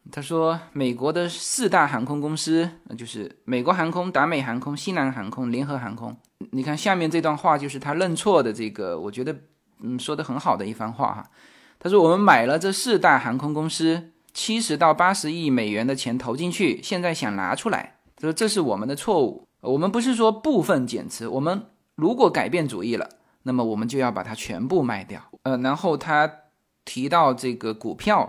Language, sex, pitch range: Chinese, male, 130-185 Hz